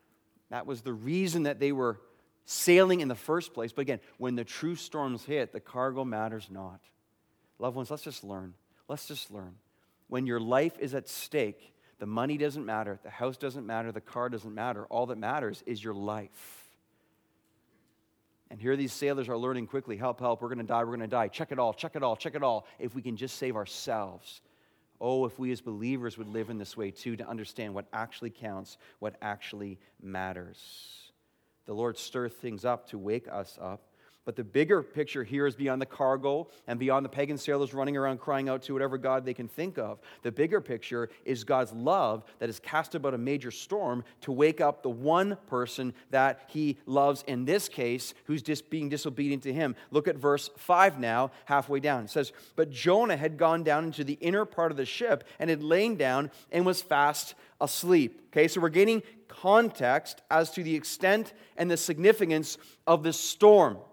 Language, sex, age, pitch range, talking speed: English, male, 30-49, 120-150 Hz, 200 wpm